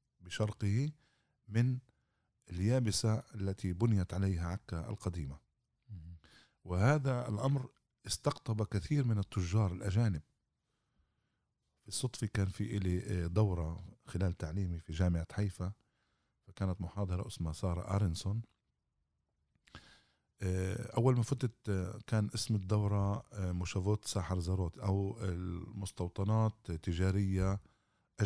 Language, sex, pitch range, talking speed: Arabic, male, 90-110 Hz, 90 wpm